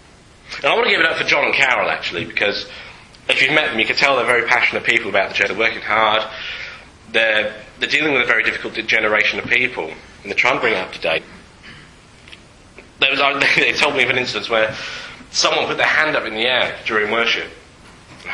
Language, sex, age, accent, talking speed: English, male, 40-59, British, 225 wpm